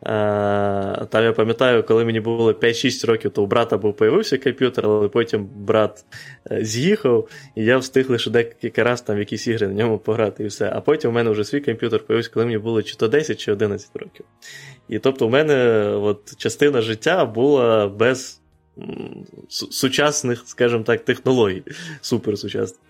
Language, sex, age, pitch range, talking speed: Ukrainian, male, 20-39, 105-125 Hz, 165 wpm